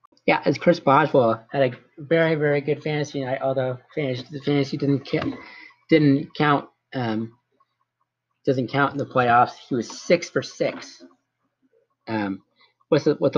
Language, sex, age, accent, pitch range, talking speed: English, male, 30-49, American, 125-150 Hz, 155 wpm